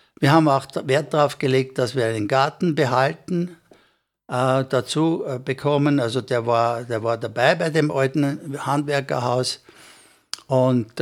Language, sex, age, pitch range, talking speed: German, male, 60-79, 130-160 Hz, 140 wpm